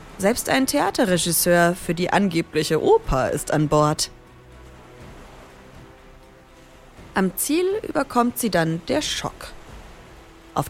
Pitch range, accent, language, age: 150-205 Hz, German, German, 30-49